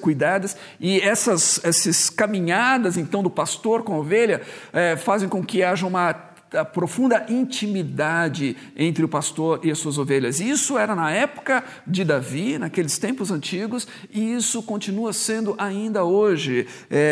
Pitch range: 160-210 Hz